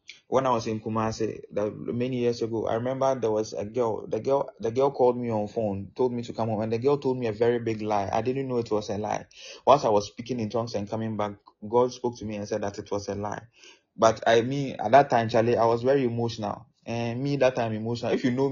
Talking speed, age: 270 wpm, 20-39